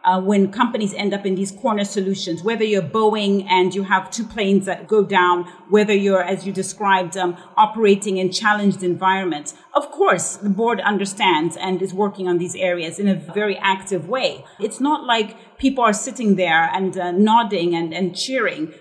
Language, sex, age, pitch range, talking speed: English, female, 40-59, 185-220 Hz, 190 wpm